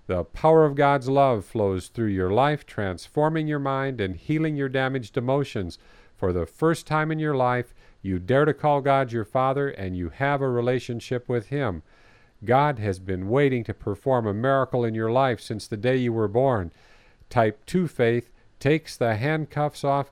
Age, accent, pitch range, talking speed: 50-69, American, 110-135 Hz, 185 wpm